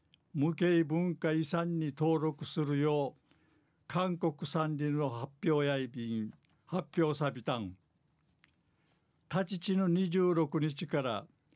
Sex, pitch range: male, 145-175 Hz